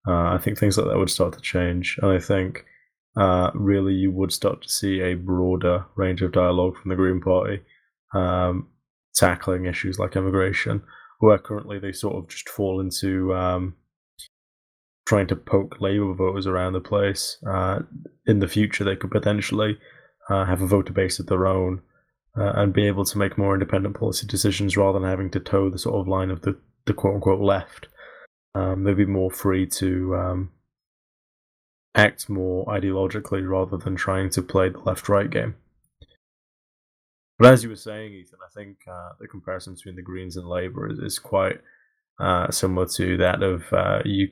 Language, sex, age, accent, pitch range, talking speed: English, male, 20-39, British, 90-100 Hz, 180 wpm